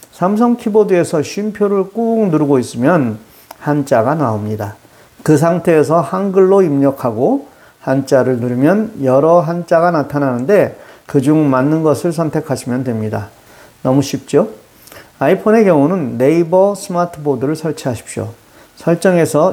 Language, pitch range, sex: Korean, 125-175 Hz, male